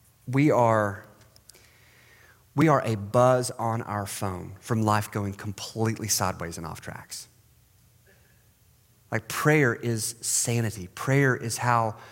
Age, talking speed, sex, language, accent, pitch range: 30-49, 120 wpm, male, English, American, 105-125 Hz